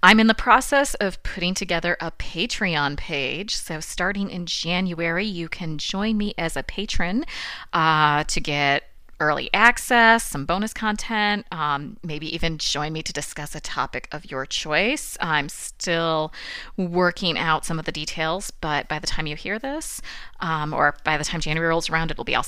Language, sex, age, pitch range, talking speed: English, female, 30-49, 155-200 Hz, 180 wpm